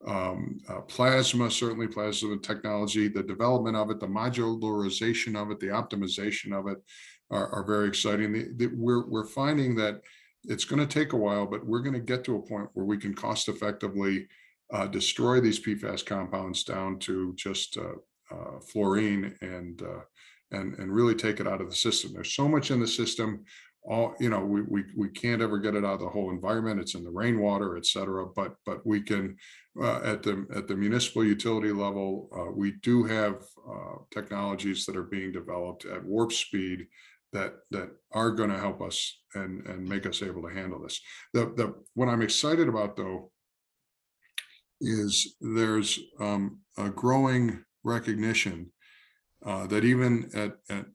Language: English